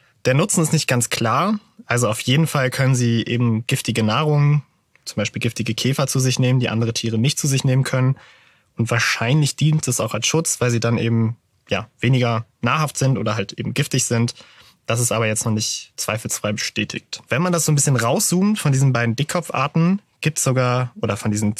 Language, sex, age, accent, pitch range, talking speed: German, male, 20-39, German, 120-145 Hz, 210 wpm